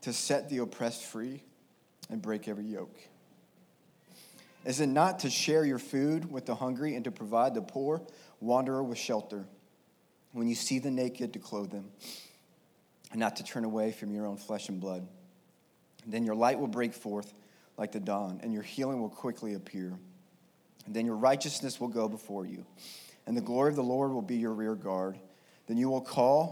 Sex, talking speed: male, 190 wpm